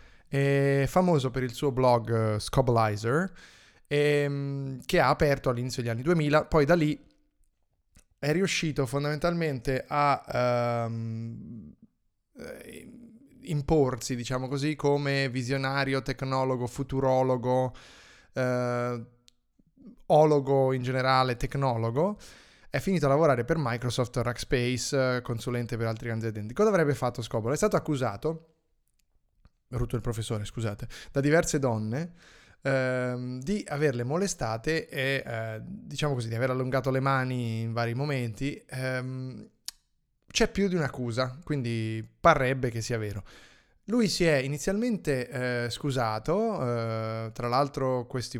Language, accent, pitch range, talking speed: Italian, native, 120-145 Hz, 120 wpm